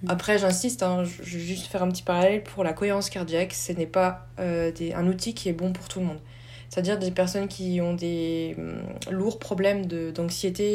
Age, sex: 20-39, female